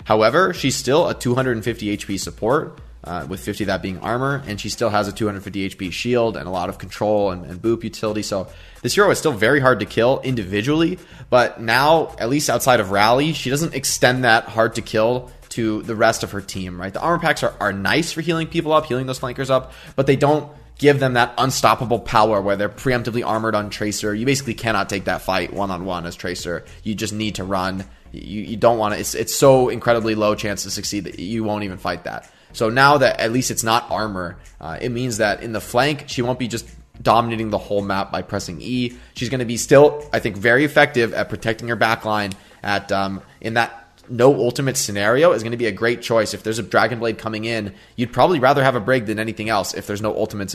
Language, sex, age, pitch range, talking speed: English, male, 20-39, 100-125 Hz, 230 wpm